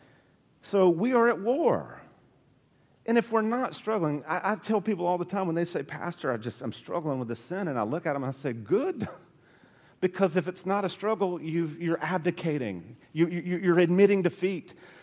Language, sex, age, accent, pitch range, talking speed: English, male, 40-59, American, 155-190 Hz, 205 wpm